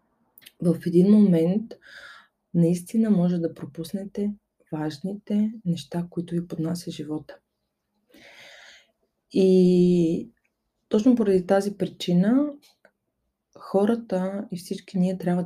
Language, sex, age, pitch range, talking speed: Bulgarian, female, 20-39, 165-200 Hz, 90 wpm